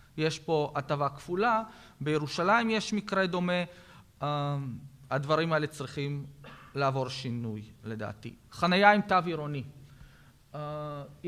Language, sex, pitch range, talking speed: Hebrew, male, 145-195 Hz, 105 wpm